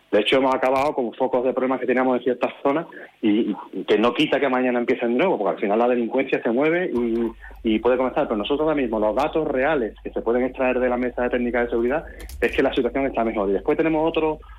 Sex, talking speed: male, 255 wpm